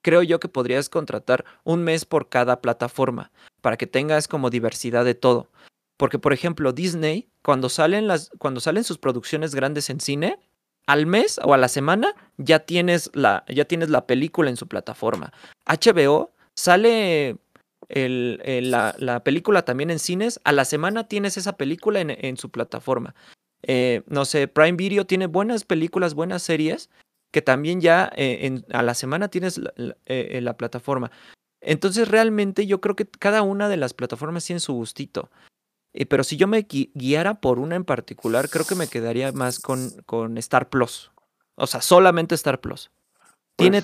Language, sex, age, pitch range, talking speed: Spanish, male, 30-49, 130-175 Hz, 175 wpm